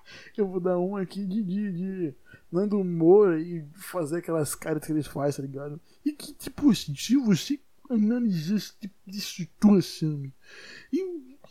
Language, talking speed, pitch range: Portuguese, 165 wpm, 145-220 Hz